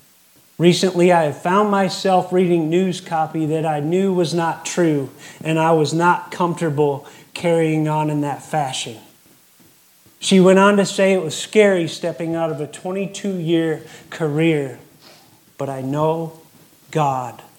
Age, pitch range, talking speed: 30-49, 145-170 Hz, 145 wpm